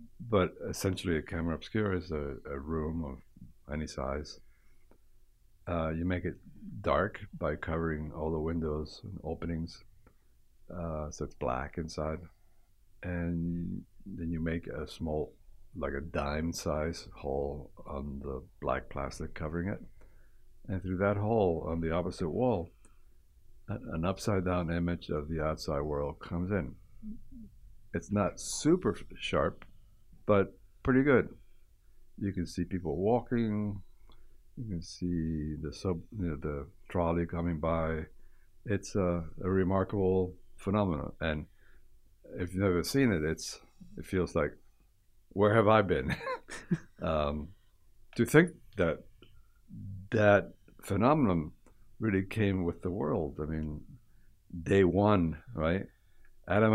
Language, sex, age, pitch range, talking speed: English, male, 60-79, 80-100 Hz, 130 wpm